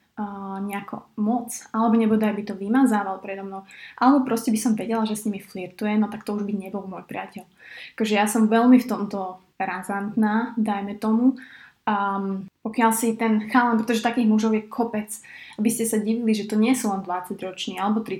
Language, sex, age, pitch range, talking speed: Slovak, female, 20-39, 195-225 Hz, 190 wpm